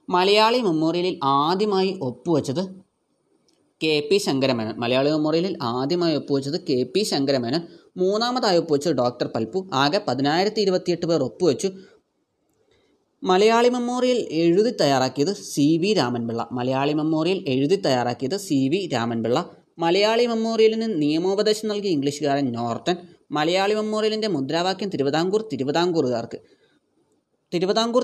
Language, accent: Malayalam, native